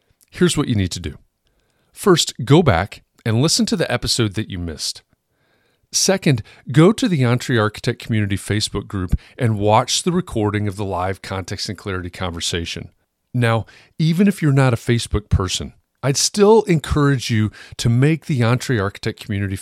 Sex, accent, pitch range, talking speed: male, American, 105-135 Hz, 170 wpm